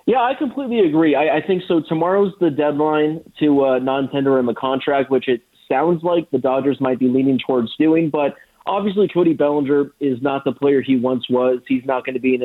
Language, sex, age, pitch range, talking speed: English, male, 30-49, 135-170 Hz, 220 wpm